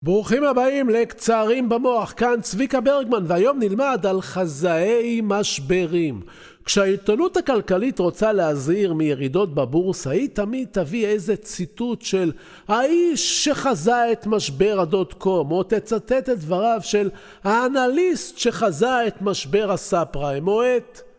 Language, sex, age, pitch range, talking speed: Hebrew, male, 50-69, 180-250 Hz, 120 wpm